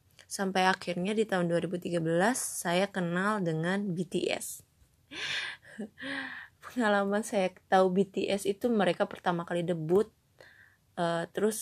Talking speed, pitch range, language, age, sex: 105 wpm, 175-205 Hz, Malay, 20-39, female